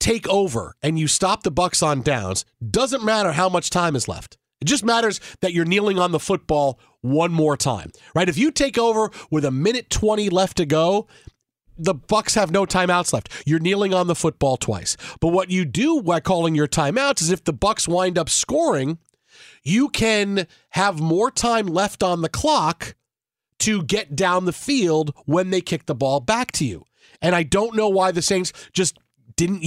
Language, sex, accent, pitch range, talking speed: English, male, American, 170-230 Hz, 200 wpm